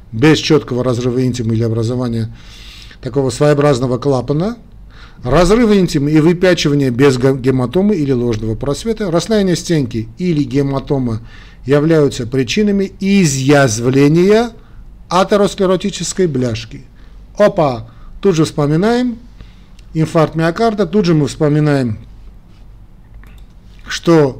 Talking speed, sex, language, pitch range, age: 95 wpm, male, Russian, 125-175 Hz, 50-69